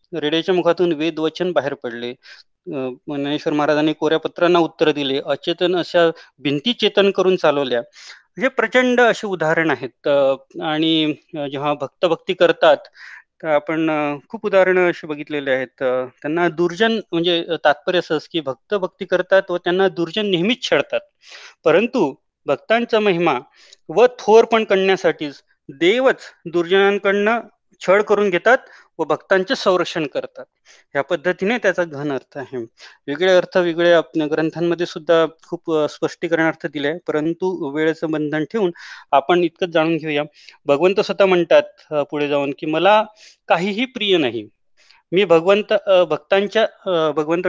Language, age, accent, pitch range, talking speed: Marathi, 30-49, native, 155-205 Hz, 90 wpm